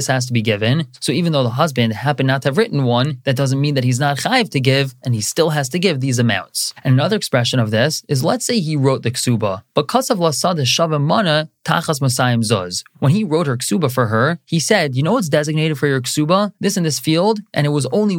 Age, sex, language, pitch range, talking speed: 20-39, male, English, 125-165 Hz, 240 wpm